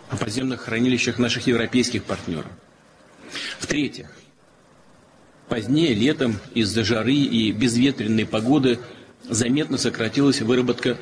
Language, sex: Russian, male